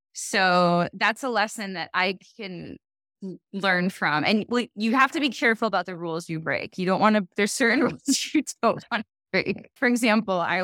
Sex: female